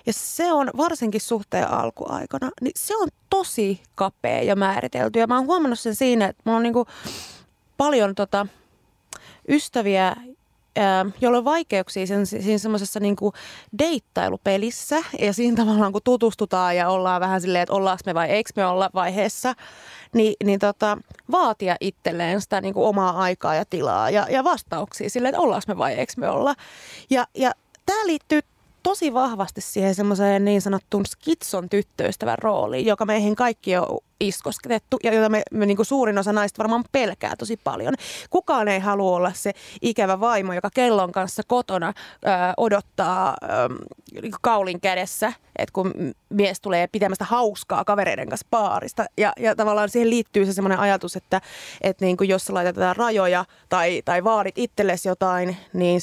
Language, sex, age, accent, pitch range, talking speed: Finnish, female, 30-49, native, 195-235 Hz, 155 wpm